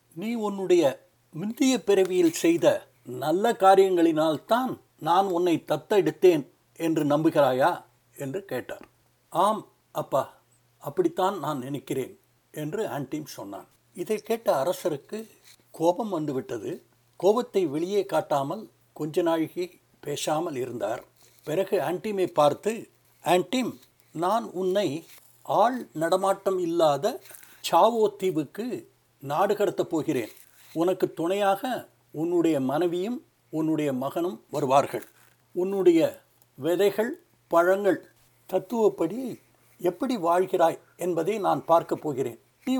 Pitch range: 165-225 Hz